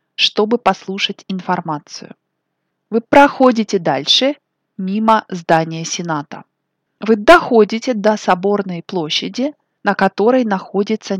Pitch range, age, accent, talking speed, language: 185-235 Hz, 20-39, native, 90 wpm, Russian